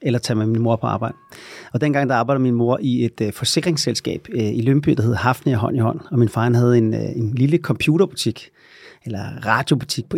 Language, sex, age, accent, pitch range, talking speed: Danish, male, 30-49, native, 120-145 Hz, 230 wpm